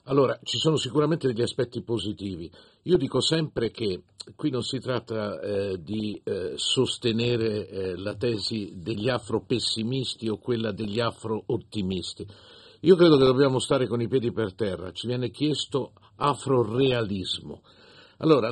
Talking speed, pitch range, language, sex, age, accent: 140 wpm, 110-130 Hz, Italian, male, 50-69, native